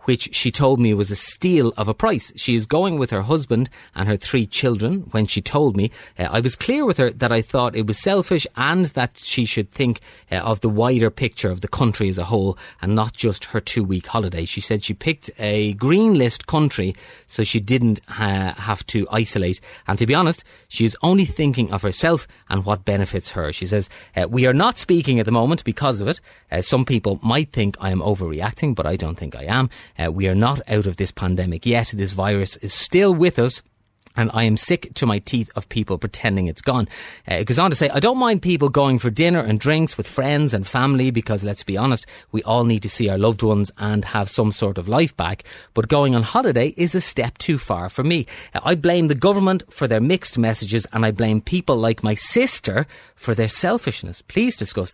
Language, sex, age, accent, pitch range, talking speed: English, male, 30-49, Irish, 105-135 Hz, 230 wpm